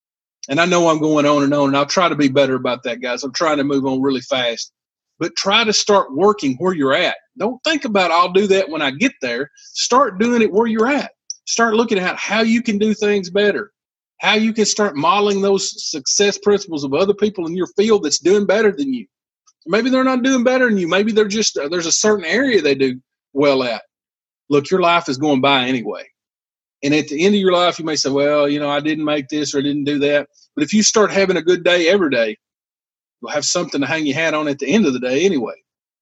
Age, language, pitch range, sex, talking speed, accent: 40-59, English, 145-210 Hz, male, 245 wpm, American